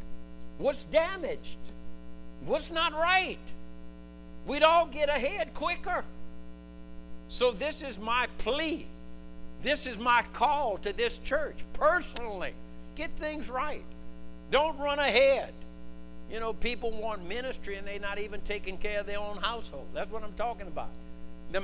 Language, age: English, 60-79